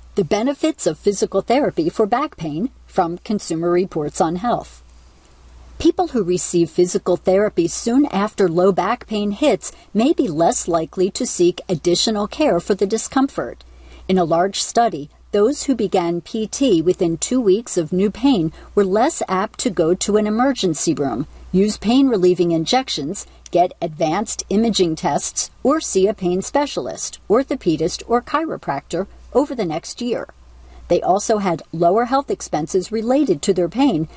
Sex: female